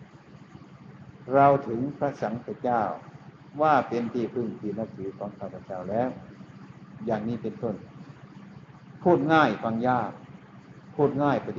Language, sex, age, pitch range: Thai, male, 60-79, 105-130 Hz